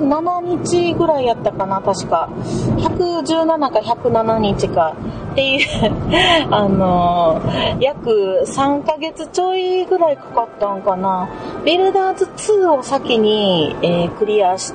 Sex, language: female, Japanese